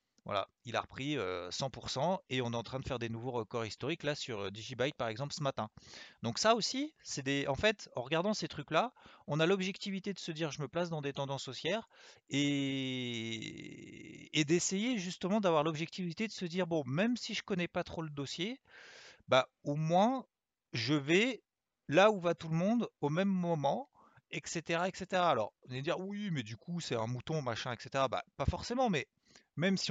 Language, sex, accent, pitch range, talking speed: French, male, French, 125-180 Hz, 200 wpm